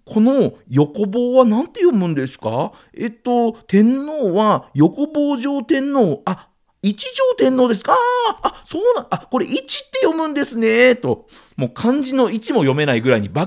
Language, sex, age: Japanese, male, 40-59